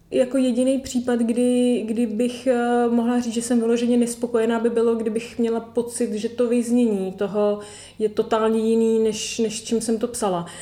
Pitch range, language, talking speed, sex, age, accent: 205-230 Hz, Czech, 175 wpm, female, 30-49, native